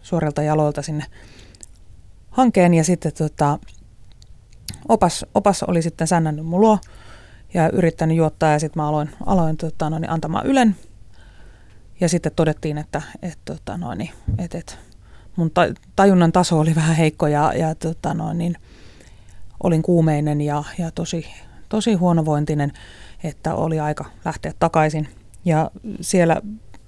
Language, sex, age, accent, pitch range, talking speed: Finnish, female, 30-49, native, 140-170 Hz, 130 wpm